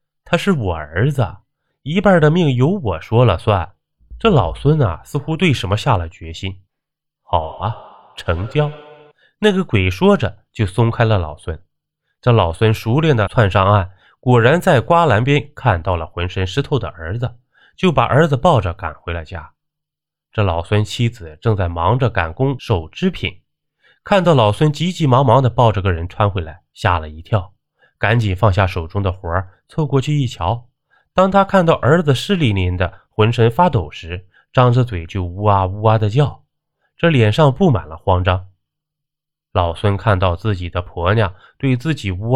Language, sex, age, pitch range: Chinese, male, 20-39, 95-145 Hz